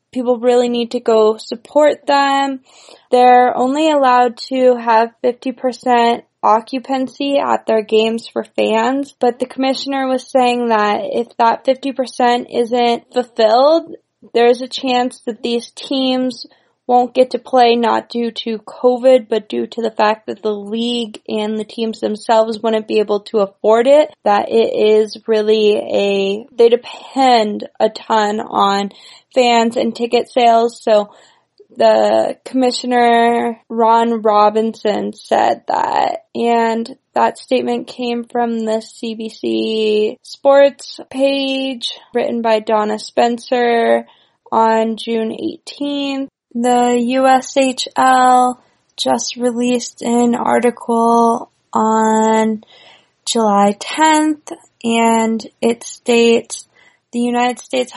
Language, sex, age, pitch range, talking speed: English, female, 10-29, 220-255 Hz, 120 wpm